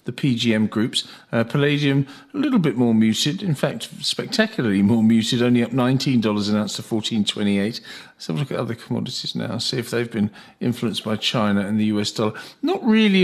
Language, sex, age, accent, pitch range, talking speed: English, male, 50-69, British, 105-140 Hz, 190 wpm